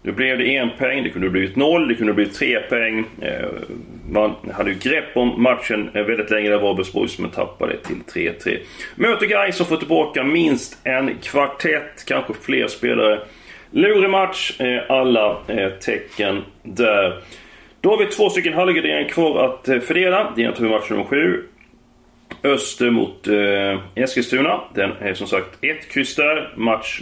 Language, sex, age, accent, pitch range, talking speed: Swedish, male, 30-49, native, 105-155 Hz, 160 wpm